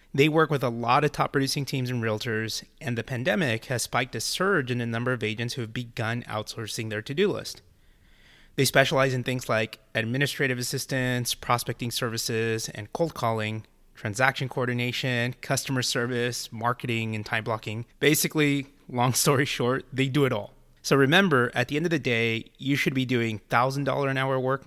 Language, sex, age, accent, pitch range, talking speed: English, male, 30-49, American, 115-140 Hz, 180 wpm